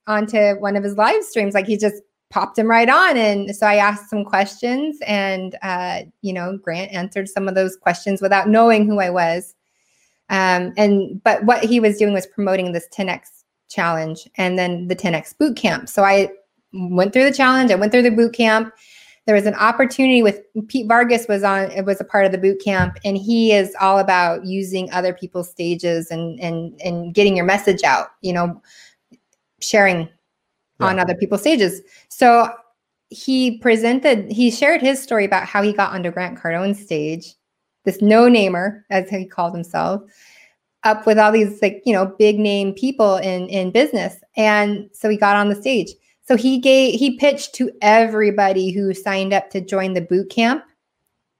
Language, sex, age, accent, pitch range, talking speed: English, female, 20-39, American, 190-220 Hz, 185 wpm